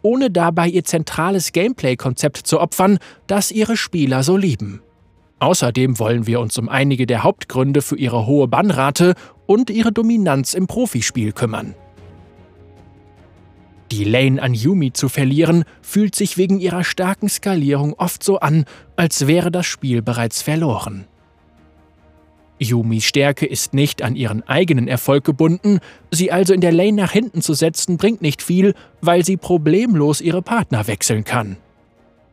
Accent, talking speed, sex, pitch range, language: German, 145 wpm, male, 115-180 Hz, German